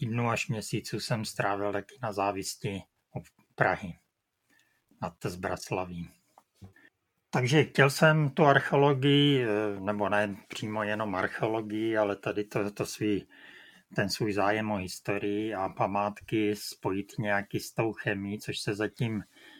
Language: Czech